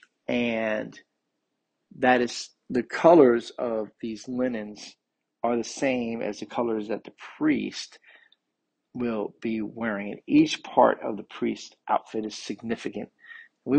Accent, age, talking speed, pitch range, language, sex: American, 40-59, 130 wpm, 110-130 Hz, English, male